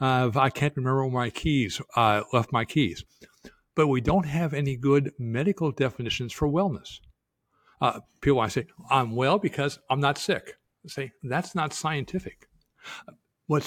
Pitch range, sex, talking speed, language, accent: 115-150 Hz, male, 165 wpm, English, American